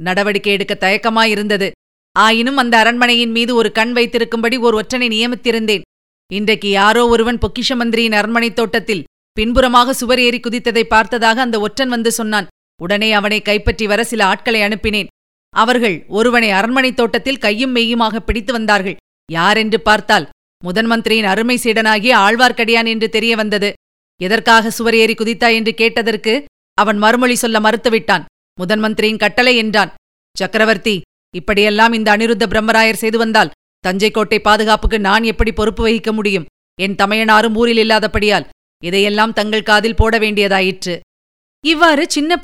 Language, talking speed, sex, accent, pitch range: Tamil, 125 wpm, female, native, 200-230 Hz